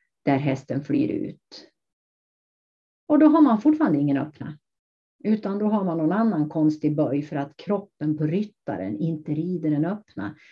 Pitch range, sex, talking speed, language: 145-200 Hz, female, 160 wpm, English